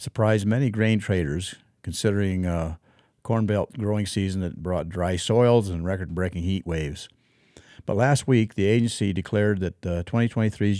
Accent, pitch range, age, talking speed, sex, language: American, 90-110 Hz, 50-69, 155 wpm, male, English